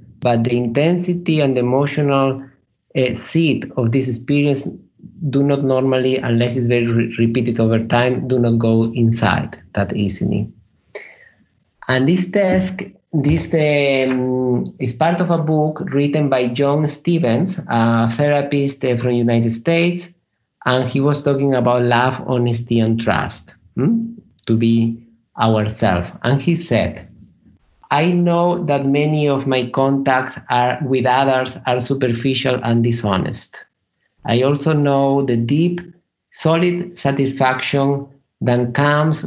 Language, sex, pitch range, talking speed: Slovak, male, 120-150 Hz, 135 wpm